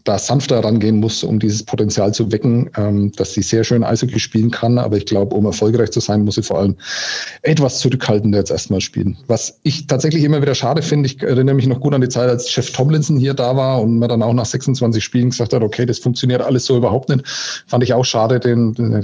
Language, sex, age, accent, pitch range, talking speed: German, male, 40-59, German, 110-130 Hz, 235 wpm